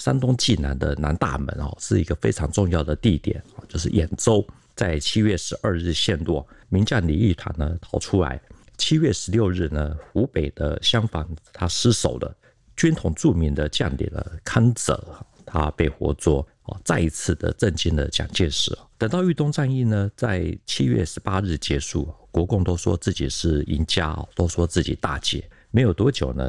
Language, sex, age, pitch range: Chinese, male, 50-69, 80-105 Hz